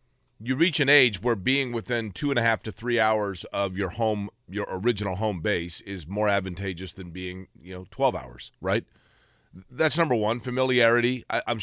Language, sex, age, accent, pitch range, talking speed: English, male, 40-59, American, 100-125 Hz, 185 wpm